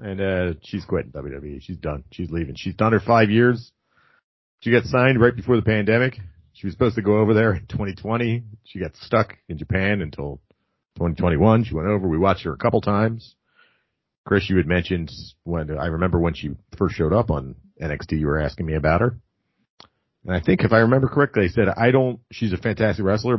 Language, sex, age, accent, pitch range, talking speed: English, male, 40-59, American, 85-115 Hz, 210 wpm